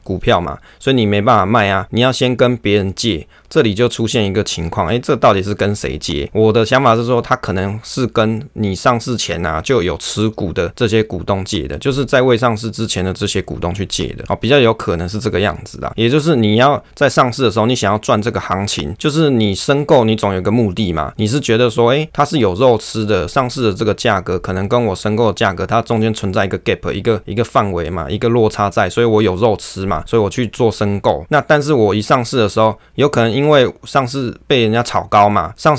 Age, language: 20-39, Chinese